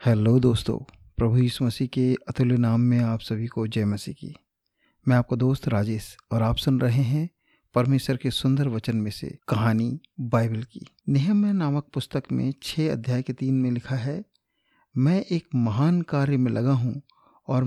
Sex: male